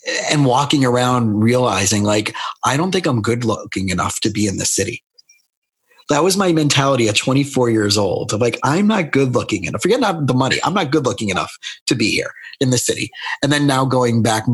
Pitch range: 105-130 Hz